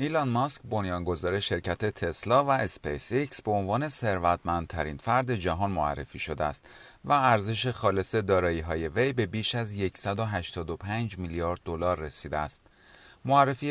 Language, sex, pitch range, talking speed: Persian, male, 90-125 Hz, 135 wpm